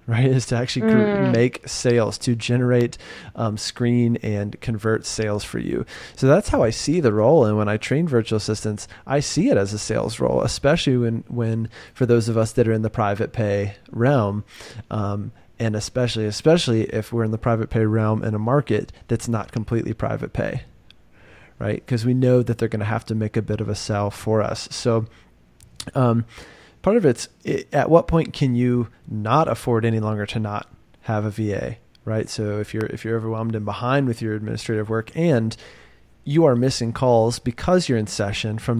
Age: 30-49